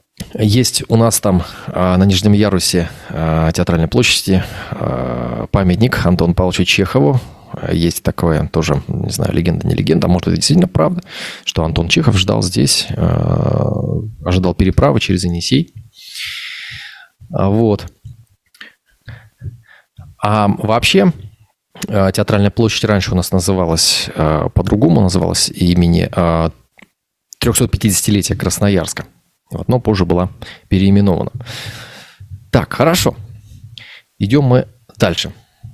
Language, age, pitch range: Russian, 30-49, 95-125 Hz